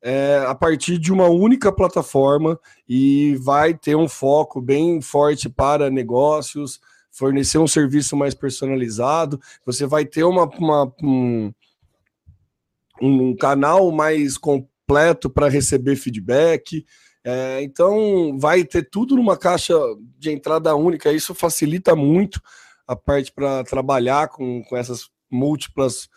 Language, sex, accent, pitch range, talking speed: Portuguese, male, Brazilian, 130-170 Hz, 120 wpm